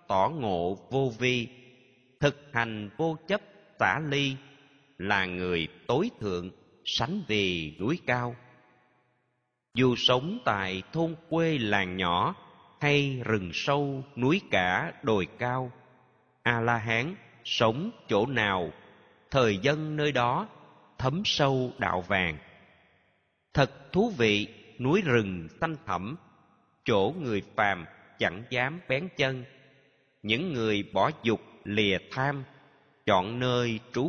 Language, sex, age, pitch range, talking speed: Vietnamese, male, 30-49, 100-140 Hz, 120 wpm